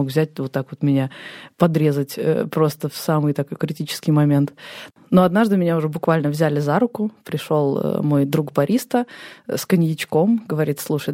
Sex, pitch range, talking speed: female, 150-185 Hz, 155 wpm